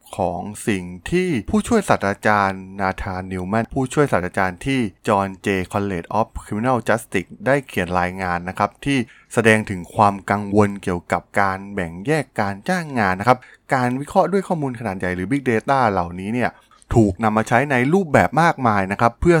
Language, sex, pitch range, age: Thai, male, 100-135 Hz, 20-39